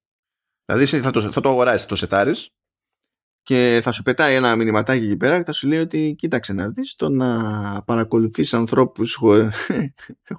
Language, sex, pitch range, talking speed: Greek, male, 110-155 Hz, 175 wpm